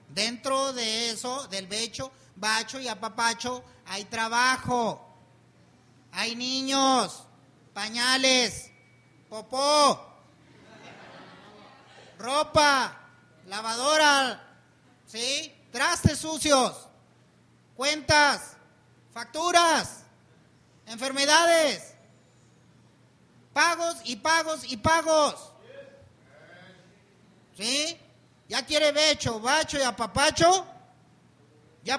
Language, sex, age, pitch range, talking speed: Spanish, male, 40-59, 230-315 Hz, 65 wpm